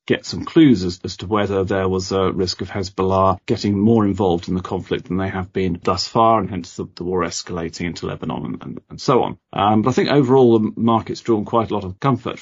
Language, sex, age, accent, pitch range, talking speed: English, male, 40-59, British, 90-110 Hz, 245 wpm